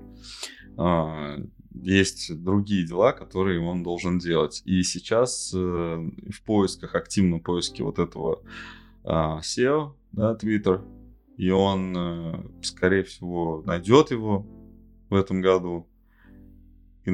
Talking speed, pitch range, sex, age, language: 100 wpm, 90-110 Hz, male, 20-39, Russian